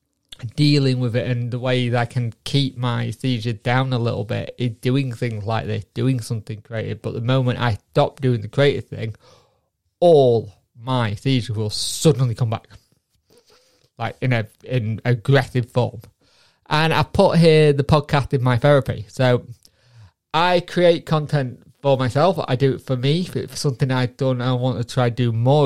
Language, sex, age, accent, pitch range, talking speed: English, male, 30-49, British, 120-135 Hz, 180 wpm